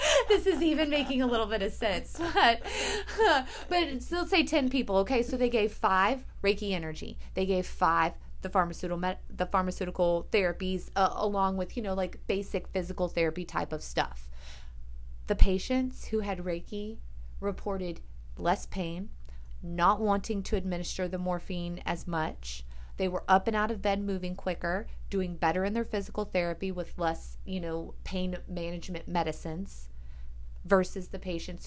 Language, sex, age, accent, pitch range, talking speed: English, female, 20-39, American, 165-200 Hz, 160 wpm